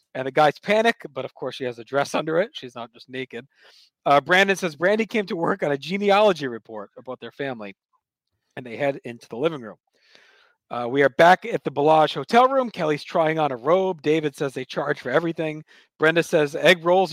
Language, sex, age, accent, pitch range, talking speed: English, male, 40-59, American, 140-185 Hz, 215 wpm